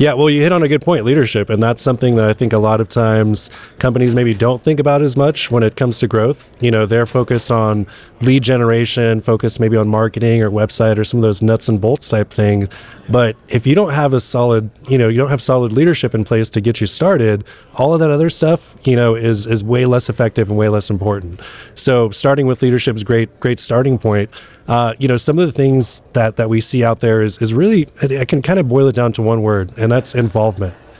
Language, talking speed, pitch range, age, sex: English, 245 wpm, 110-130 Hz, 20-39, male